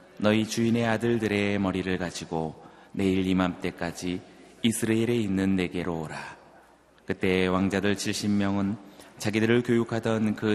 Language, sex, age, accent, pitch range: Korean, male, 30-49, native, 90-110 Hz